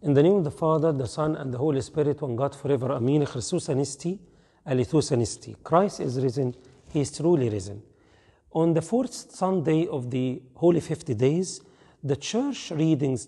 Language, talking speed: English, 160 wpm